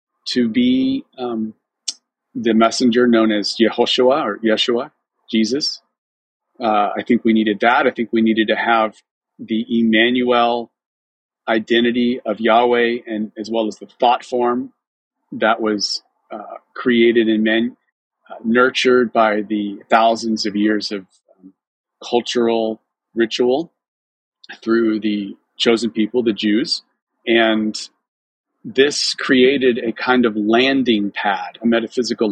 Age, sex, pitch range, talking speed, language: 40-59, male, 110-125 Hz, 125 wpm, English